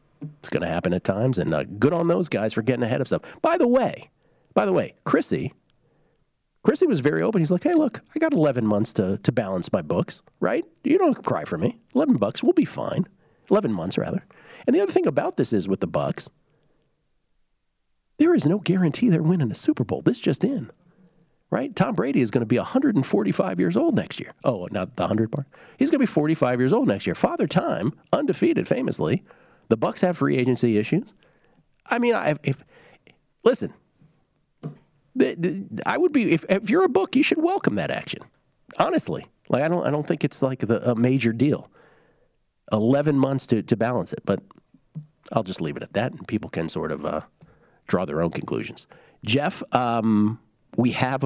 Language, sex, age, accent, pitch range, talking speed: English, male, 40-59, American, 120-185 Hz, 205 wpm